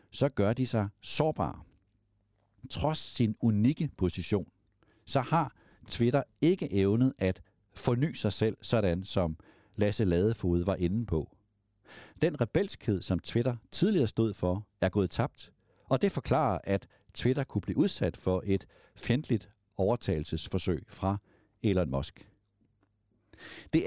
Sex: male